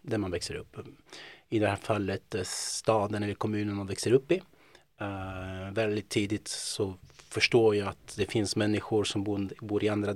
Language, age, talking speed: Swedish, 30-49, 165 wpm